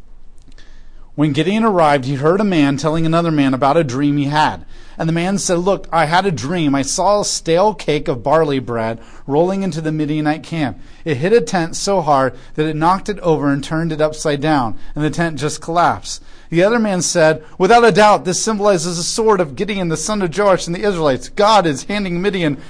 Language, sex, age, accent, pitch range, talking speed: English, male, 40-59, American, 140-185 Hz, 215 wpm